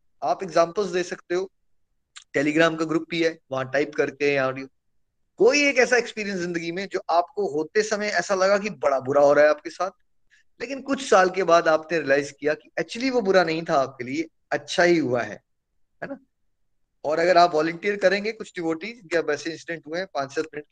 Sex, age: male, 20-39